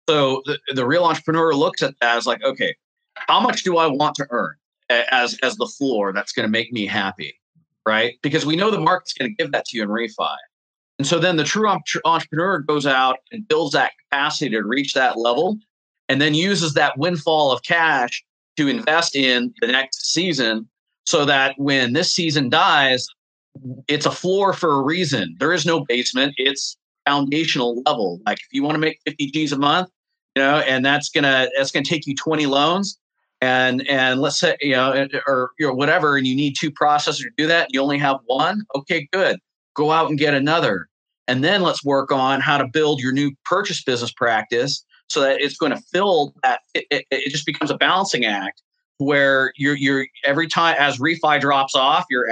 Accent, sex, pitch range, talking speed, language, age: American, male, 135-165 Hz, 210 wpm, English, 30-49